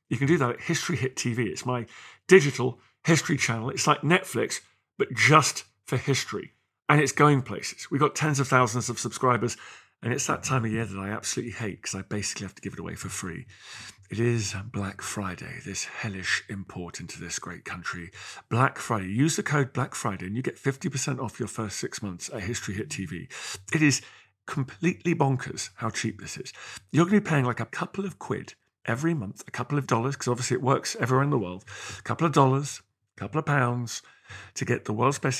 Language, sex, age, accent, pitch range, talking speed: English, male, 40-59, British, 115-145 Hz, 215 wpm